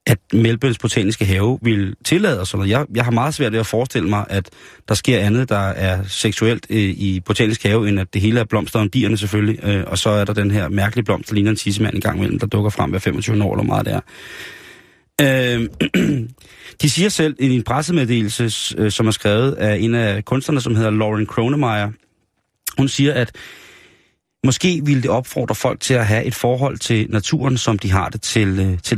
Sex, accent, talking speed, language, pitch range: male, native, 210 wpm, Danish, 105-130 Hz